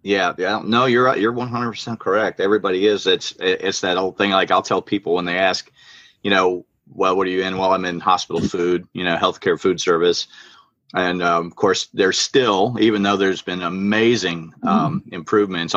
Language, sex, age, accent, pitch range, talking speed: English, male, 40-59, American, 85-120 Hz, 195 wpm